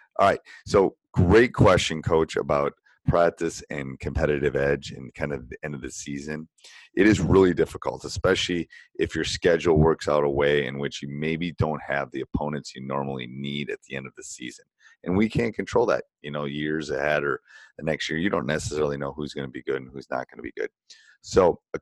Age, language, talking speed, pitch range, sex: 30-49, English, 215 wpm, 70-85 Hz, male